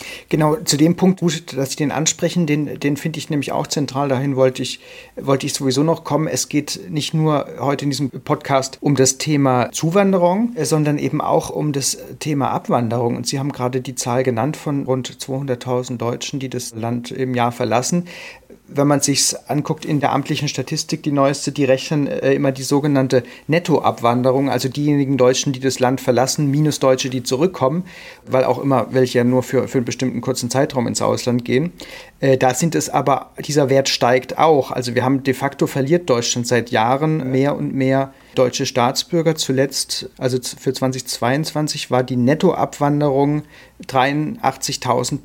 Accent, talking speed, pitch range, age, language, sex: German, 180 wpm, 130-150 Hz, 40-59, German, male